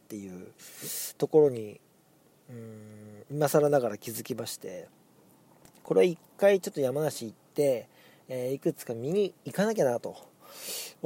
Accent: native